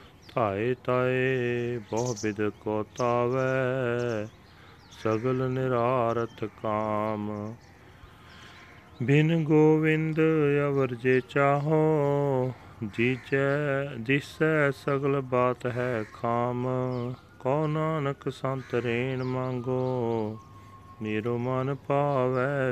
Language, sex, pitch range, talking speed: Punjabi, male, 105-130 Hz, 70 wpm